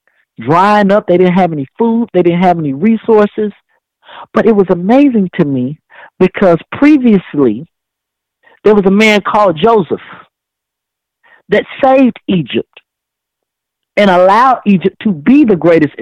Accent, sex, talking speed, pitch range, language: American, male, 135 wpm, 165-210 Hz, English